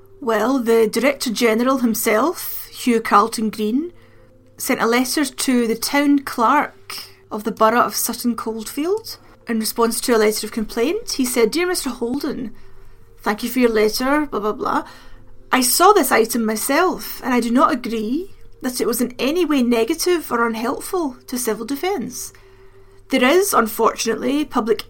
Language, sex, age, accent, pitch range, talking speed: English, female, 30-49, British, 225-310 Hz, 160 wpm